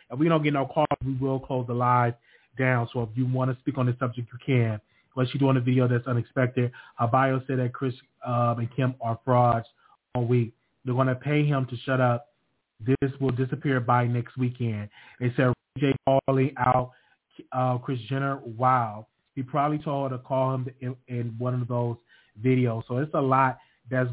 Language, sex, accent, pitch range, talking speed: English, male, American, 120-135 Hz, 205 wpm